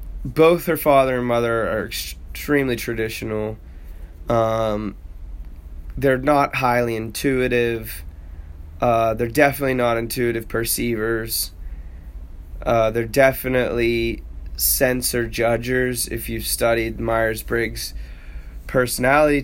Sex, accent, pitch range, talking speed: male, American, 75-120 Hz, 90 wpm